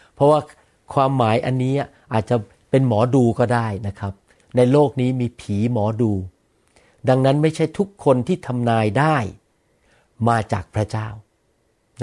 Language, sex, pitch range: Thai, male, 115-145 Hz